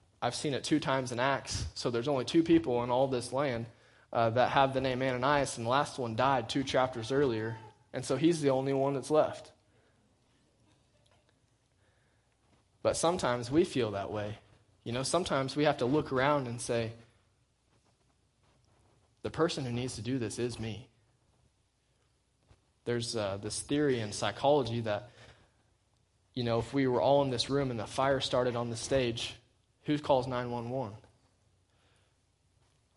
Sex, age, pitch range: male, 20-39, 110-130 Hz